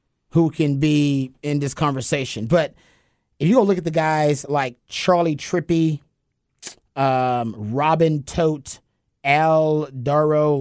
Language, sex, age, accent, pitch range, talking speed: English, male, 30-49, American, 135-165 Hz, 125 wpm